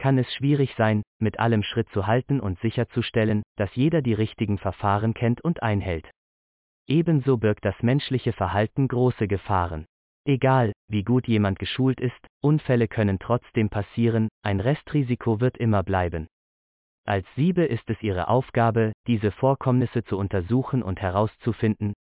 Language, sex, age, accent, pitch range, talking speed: German, male, 30-49, German, 100-125 Hz, 145 wpm